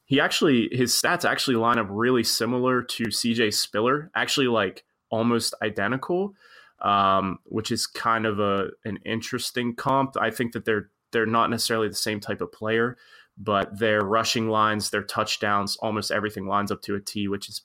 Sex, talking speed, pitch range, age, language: male, 175 wpm, 100-115 Hz, 20-39, English